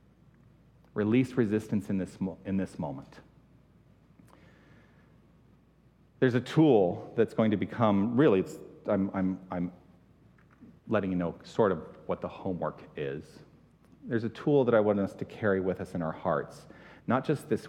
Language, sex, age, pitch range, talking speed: English, male, 40-59, 100-140 Hz, 155 wpm